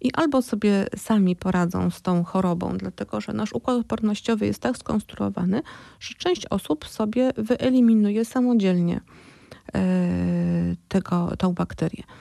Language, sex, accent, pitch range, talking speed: Polish, female, native, 180-215 Hz, 120 wpm